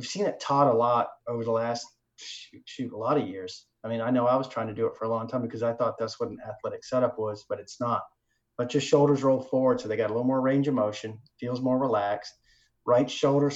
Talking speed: 265 wpm